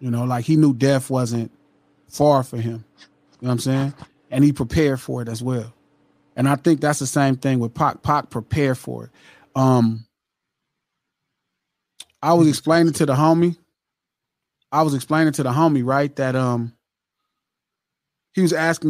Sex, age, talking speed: male, 20-39, 170 wpm